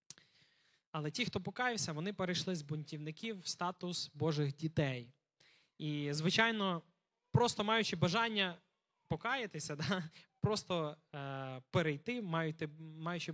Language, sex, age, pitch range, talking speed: Ukrainian, male, 20-39, 150-185 Hz, 95 wpm